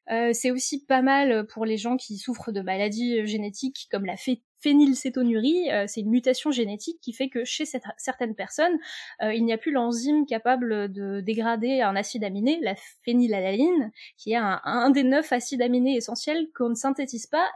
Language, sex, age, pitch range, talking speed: French, female, 20-39, 205-265 Hz, 185 wpm